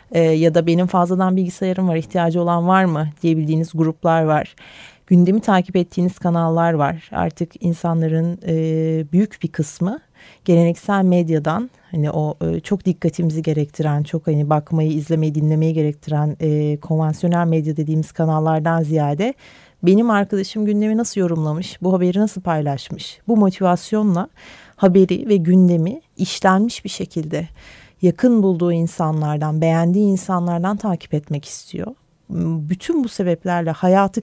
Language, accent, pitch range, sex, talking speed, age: Turkish, native, 160-190 Hz, female, 125 wpm, 30-49